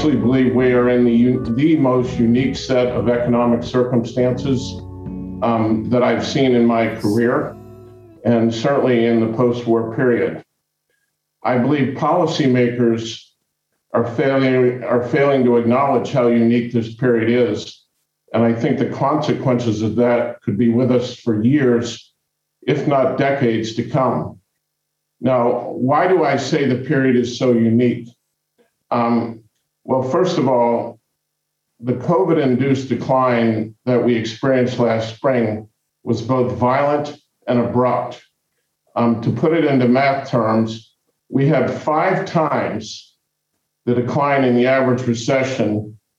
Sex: male